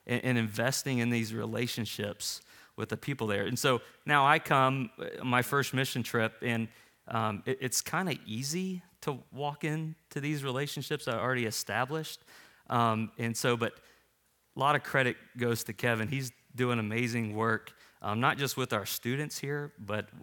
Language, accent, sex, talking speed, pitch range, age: English, American, male, 165 wpm, 110-130 Hz, 30-49